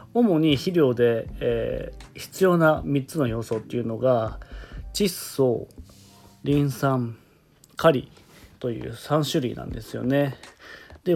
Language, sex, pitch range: Japanese, male, 115-150 Hz